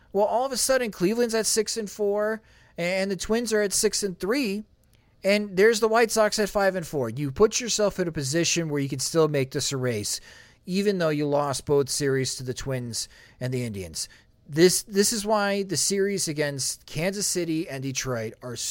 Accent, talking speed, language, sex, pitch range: American, 210 wpm, English, male, 130-185 Hz